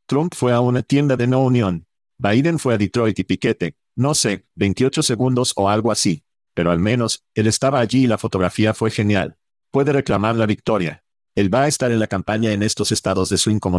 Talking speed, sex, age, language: 215 wpm, male, 50-69, Spanish